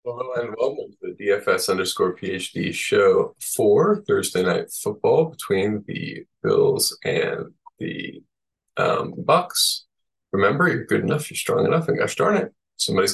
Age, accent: 20-39, American